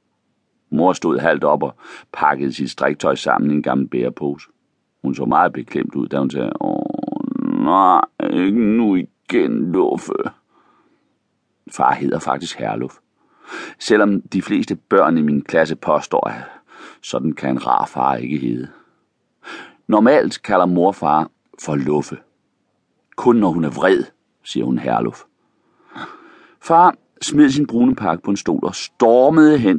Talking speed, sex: 145 wpm, male